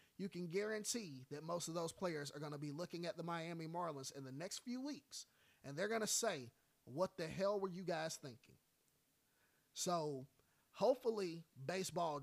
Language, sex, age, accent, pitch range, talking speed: English, male, 30-49, American, 150-185 Hz, 180 wpm